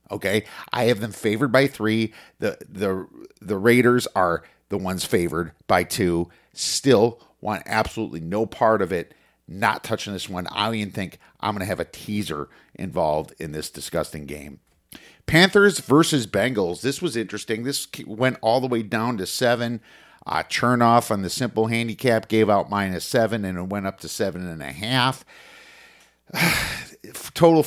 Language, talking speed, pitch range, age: English, 165 wpm, 90-120 Hz, 50-69